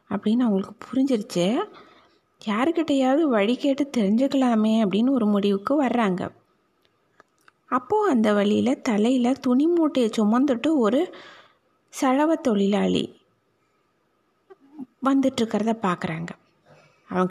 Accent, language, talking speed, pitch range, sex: native, Tamil, 85 wpm, 215-270 Hz, female